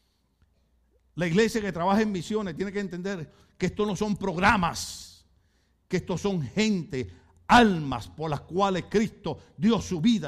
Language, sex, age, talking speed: Spanish, male, 60-79, 150 wpm